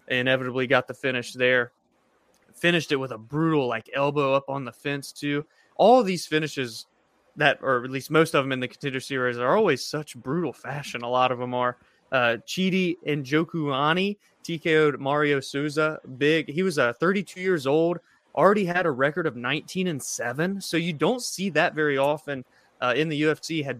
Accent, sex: American, male